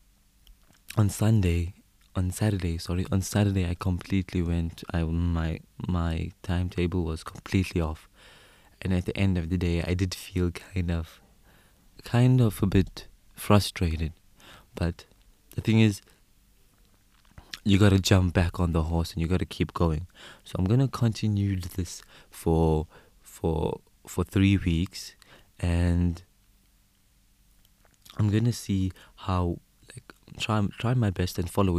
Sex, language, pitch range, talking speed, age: male, English, 90-100 Hz, 140 wpm, 20-39